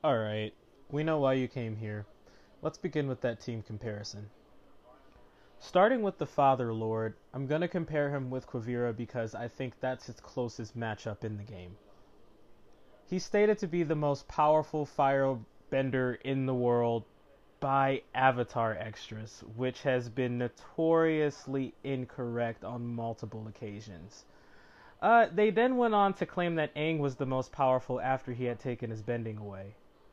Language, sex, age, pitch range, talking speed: Arabic, male, 20-39, 120-150 Hz, 155 wpm